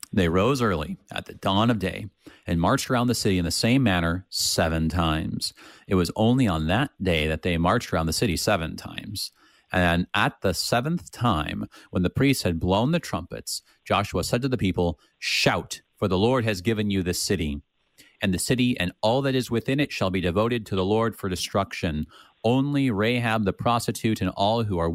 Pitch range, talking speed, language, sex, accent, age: 90-120 Hz, 200 wpm, English, male, American, 30-49